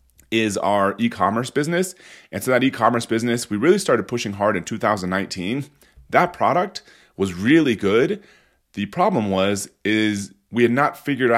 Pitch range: 95-125 Hz